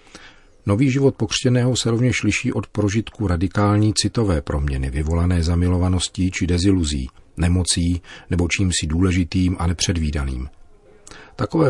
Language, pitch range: Czech, 85-100 Hz